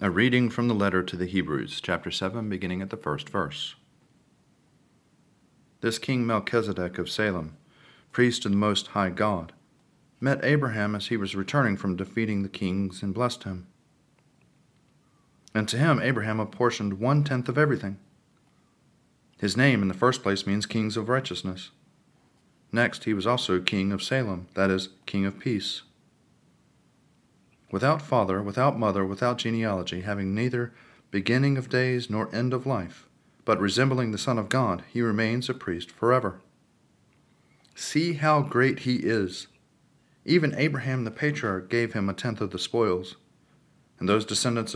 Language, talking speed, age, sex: English, 155 wpm, 40-59, male